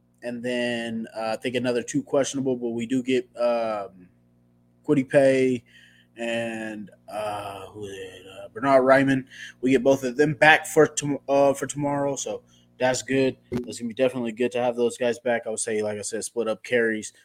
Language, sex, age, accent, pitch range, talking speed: English, male, 20-39, American, 115-145 Hz, 195 wpm